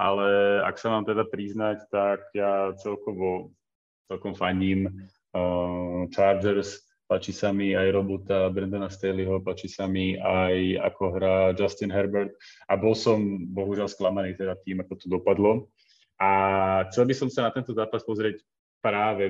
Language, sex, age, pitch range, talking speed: Slovak, male, 30-49, 95-105 Hz, 145 wpm